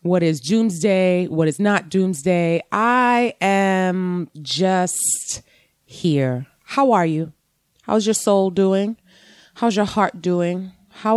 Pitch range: 165-200 Hz